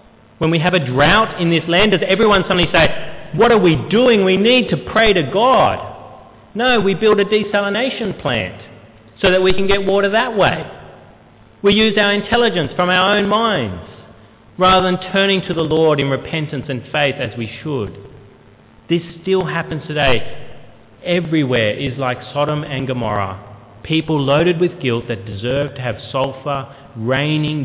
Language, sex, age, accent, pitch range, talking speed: English, male, 40-59, Australian, 110-170 Hz, 165 wpm